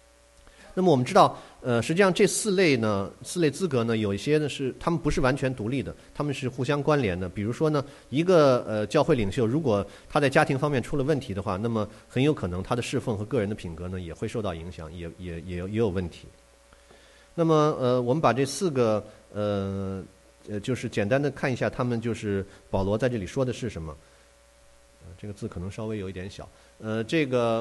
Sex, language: male, English